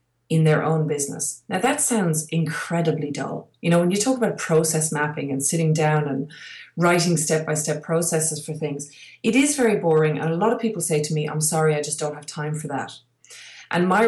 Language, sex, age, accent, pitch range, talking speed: English, female, 30-49, Irish, 150-175 Hz, 210 wpm